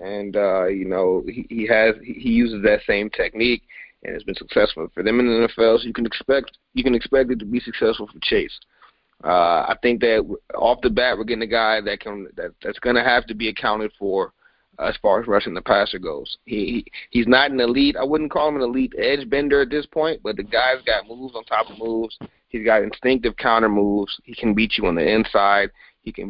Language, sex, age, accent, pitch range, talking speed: English, male, 30-49, American, 105-130 Hz, 235 wpm